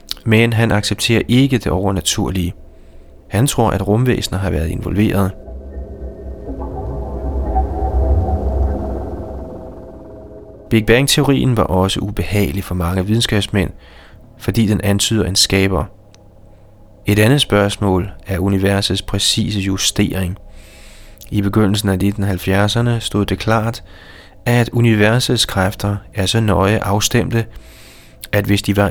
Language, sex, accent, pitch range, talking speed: Danish, male, native, 95-110 Hz, 105 wpm